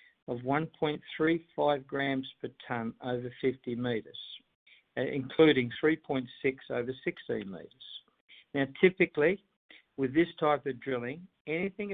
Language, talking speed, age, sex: English, 105 wpm, 60-79, male